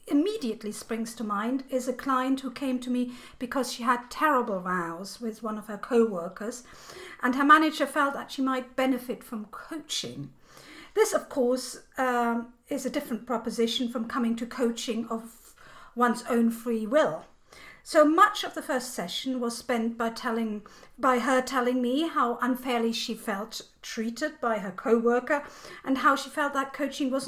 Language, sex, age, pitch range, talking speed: English, female, 50-69, 230-280 Hz, 170 wpm